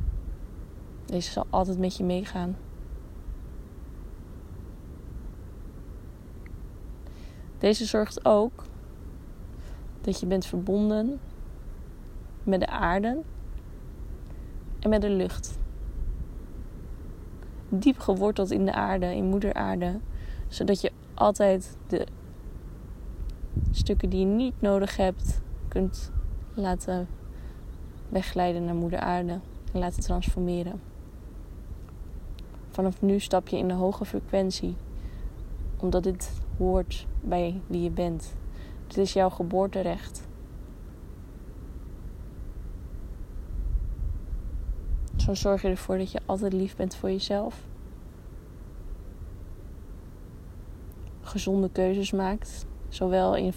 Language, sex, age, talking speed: Dutch, female, 20-39, 90 wpm